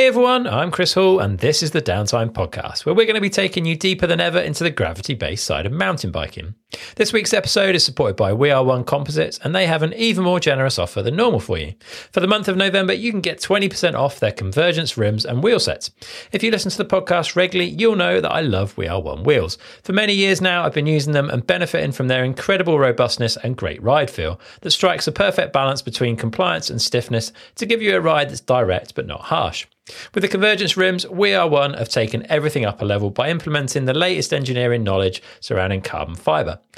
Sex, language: male, English